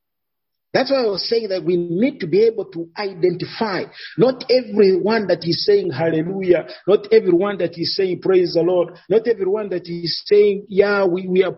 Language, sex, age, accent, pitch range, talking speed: English, male, 50-69, Nigerian, 160-220 Hz, 185 wpm